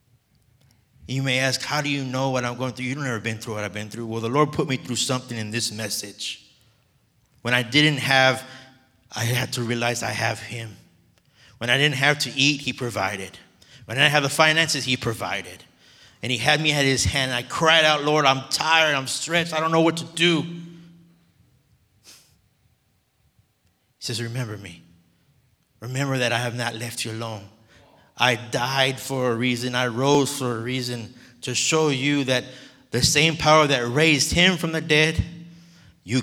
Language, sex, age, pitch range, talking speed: English, male, 30-49, 115-145 Hz, 190 wpm